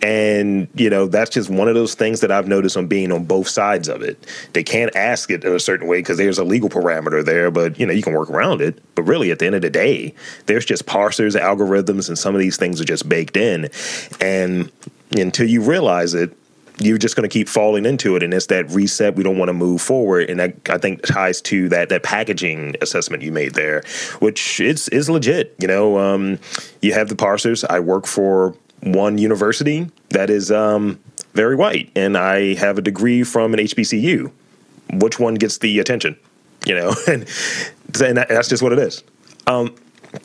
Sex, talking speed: male, 215 wpm